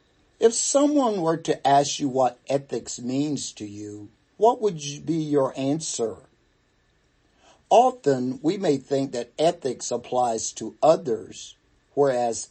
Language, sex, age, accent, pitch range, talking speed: English, male, 50-69, American, 120-150 Hz, 125 wpm